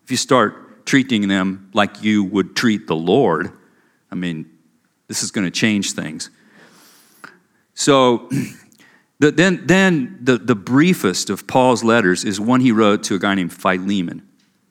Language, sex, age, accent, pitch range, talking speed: English, male, 50-69, American, 100-135 Hz, 145 wpm